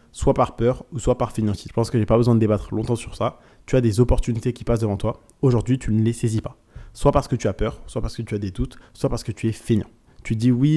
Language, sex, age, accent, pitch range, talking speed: French, male, 20-39, French, 110-125 Hz, 300 wpm